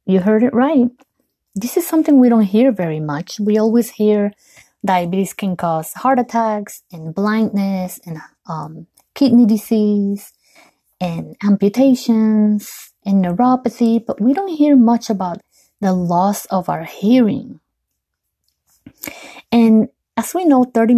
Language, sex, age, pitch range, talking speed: English, female, 20-39, 180-230 Hz, 130 wpm